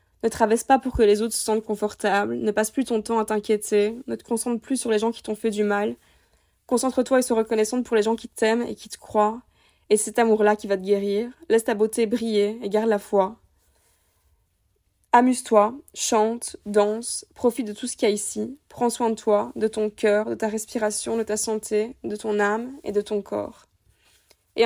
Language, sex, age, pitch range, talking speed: French, female, 20-39, 210-235 Hz, 220 wpm